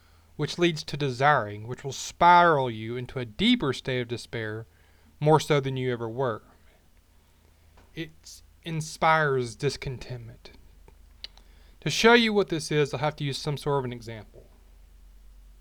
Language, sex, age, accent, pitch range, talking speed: English, male, 20-39, American, 100-150 Hz, 145 wpm